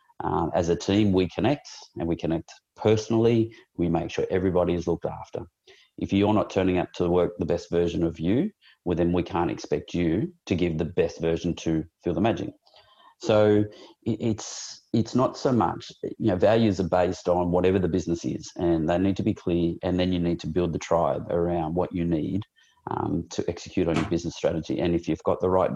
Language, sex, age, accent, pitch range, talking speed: English, male, 30-49, Australian, 85-95 Hz, 210 wpm